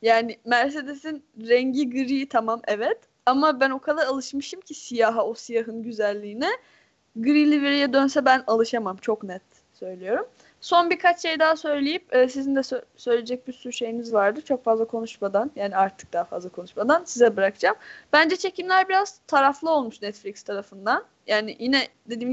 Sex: female